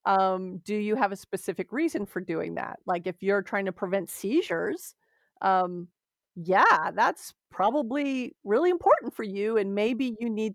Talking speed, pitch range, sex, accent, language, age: 165 wpm, 190-265 Hz, female, American, English, 40-59